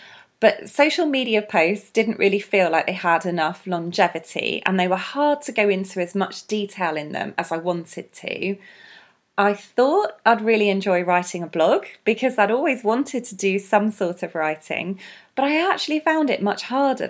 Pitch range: 180-230 Hz